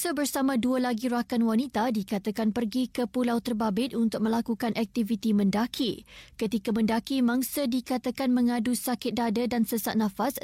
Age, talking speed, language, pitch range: 20-39, 145 wpm, Malay, 225-260 Hz